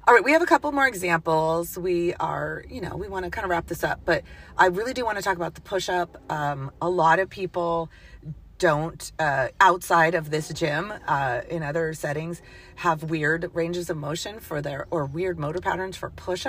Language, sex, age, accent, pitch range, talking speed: English, female, 30-49, American, 155-185 Hz, 205 wpm